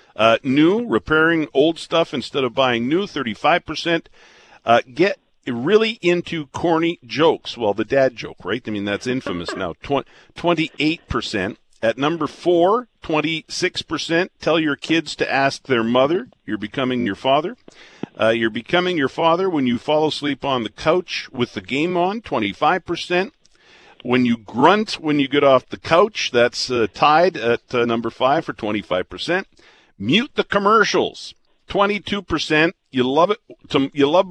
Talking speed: 150 wpm